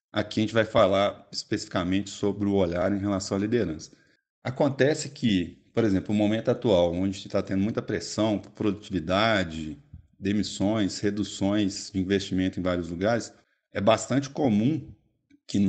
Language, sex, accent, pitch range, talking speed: Portuguese, male, Brazilian, 95-115 Hz, 155 wpm